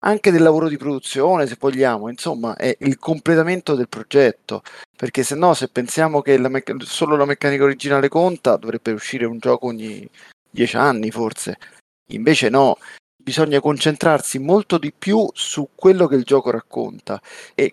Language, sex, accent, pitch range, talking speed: Italian, male, native, 120-150 Hz, 165 wpm